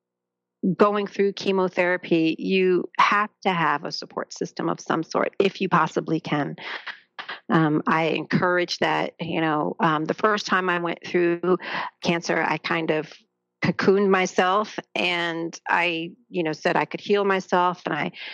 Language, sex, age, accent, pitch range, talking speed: English, female, 40-59, American, 160-190 Hz, 155 wpm